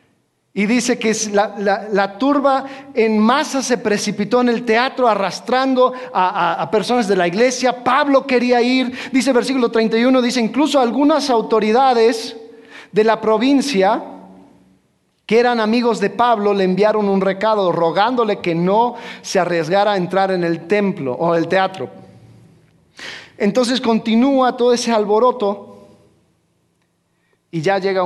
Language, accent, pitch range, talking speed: Spanish, Mexican, 170-230 Hz, 140 wpm